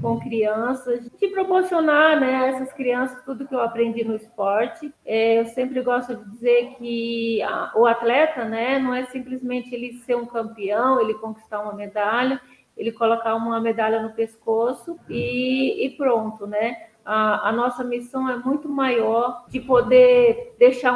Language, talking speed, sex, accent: Portuguese, 155 wpm, female, Brazilian